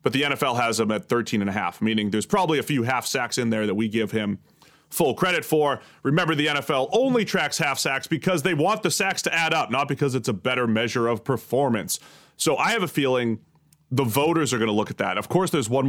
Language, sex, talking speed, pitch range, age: English, male, 250 wpm, 115-155 Hz, 30-49